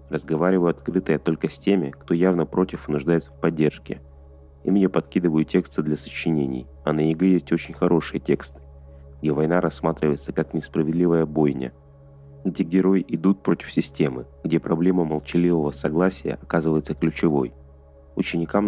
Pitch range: 70-85 Hz